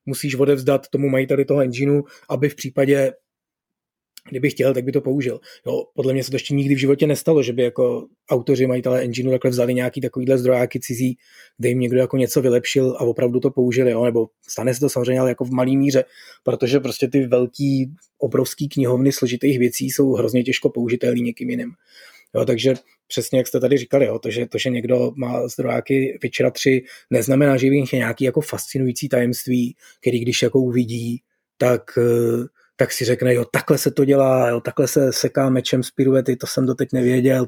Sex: male